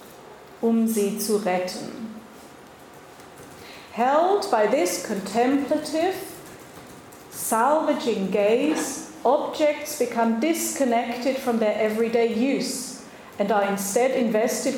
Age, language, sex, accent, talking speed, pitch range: 40-59, English, female, German, 85 wpm, 205-250 Hz